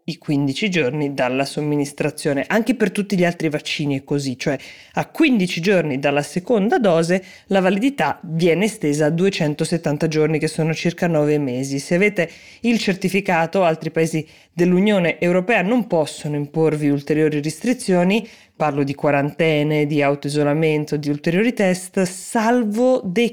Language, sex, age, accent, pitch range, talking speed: Italian, female, 20-39, native, 145-180 Hz, 140 wpm